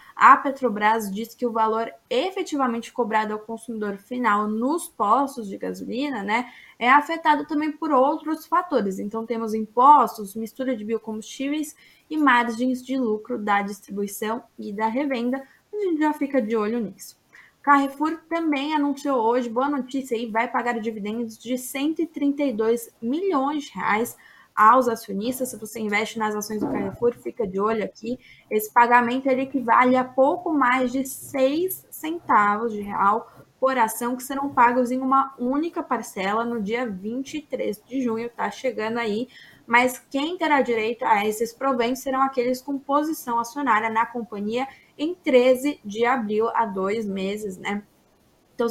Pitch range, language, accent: 220-270 Hz, Portuguese, Brazilian